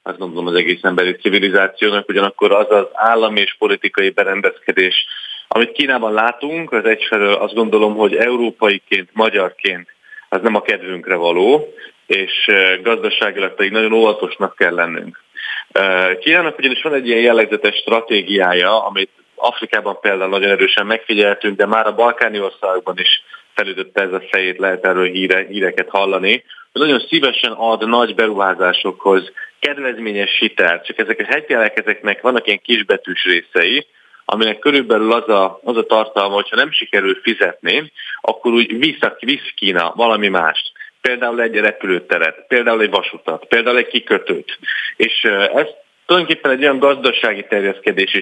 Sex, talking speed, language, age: male, 140 wpm, Hungarian, 30-49